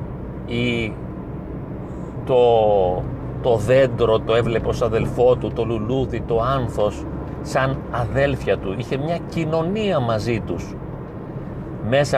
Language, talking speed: Greek, 105 wpm